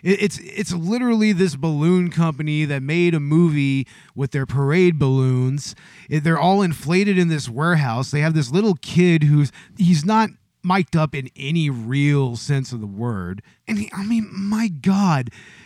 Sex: male